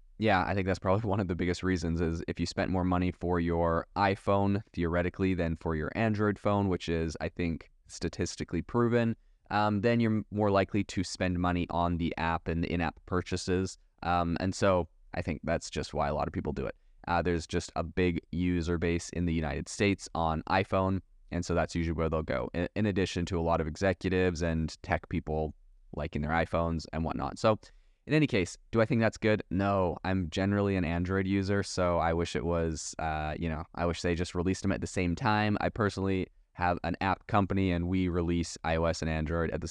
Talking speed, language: 215 wpm, English